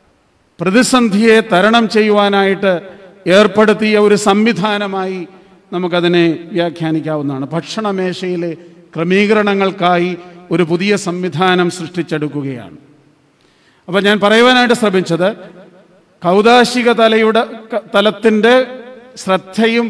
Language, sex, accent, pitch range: Malayalam, male, native, 175-215 Hz